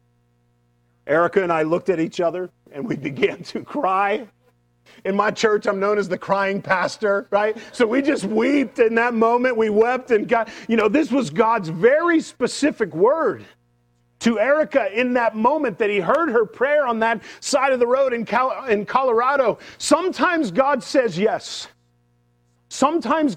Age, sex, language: 40-59, male, English